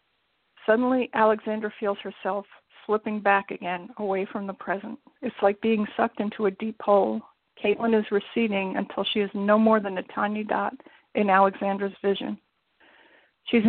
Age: 50-69